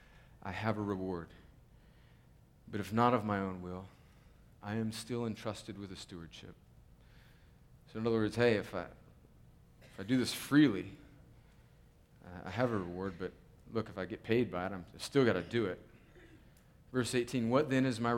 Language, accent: English, American